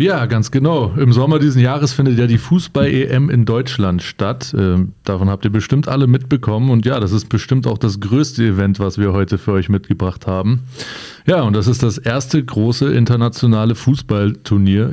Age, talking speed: 30-49, 180 wpm